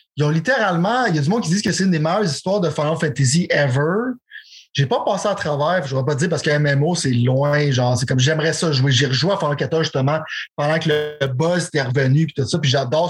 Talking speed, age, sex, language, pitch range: 260 wpm, 30-49, male, French, 140-170 Hz